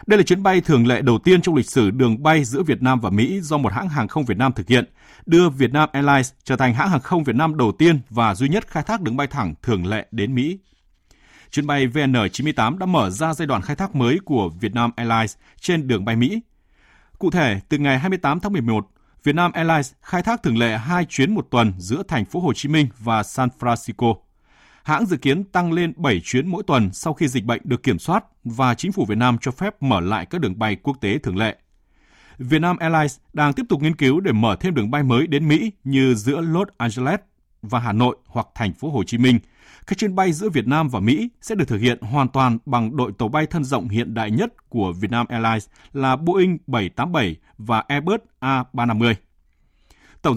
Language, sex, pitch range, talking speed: Vietnamese, male, 115-160 Hz, 225 wpm